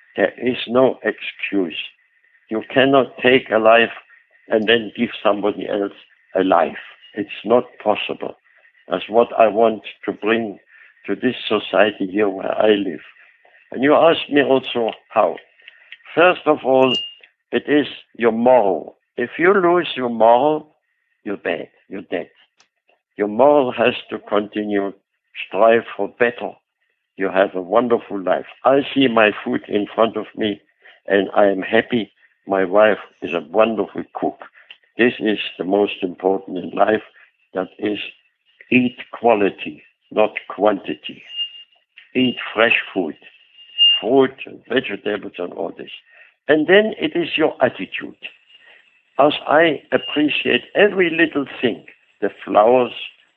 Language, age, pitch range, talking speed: English, 60-79, 105-135 Hz, 135 wpm